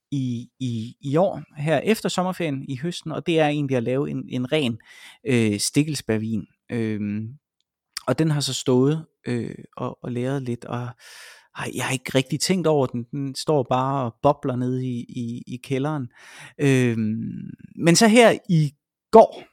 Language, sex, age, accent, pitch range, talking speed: Danish, male, 30-49, native, 125-160 Hz, 170 wpm